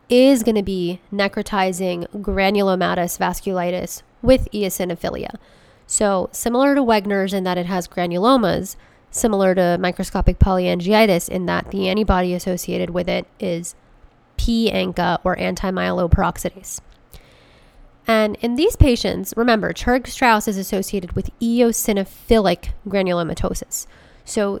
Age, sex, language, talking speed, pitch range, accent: 20-39, female, English, 110 wpm, 185-220 Hz, American